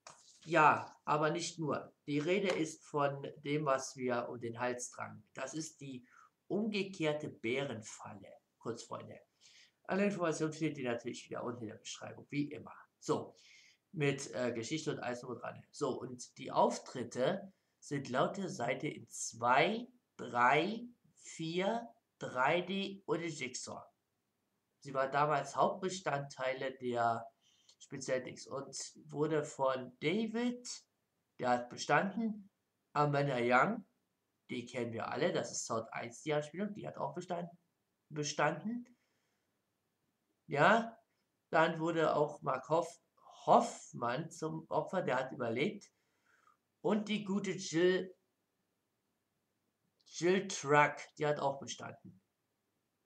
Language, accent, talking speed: German, German, 120 wpm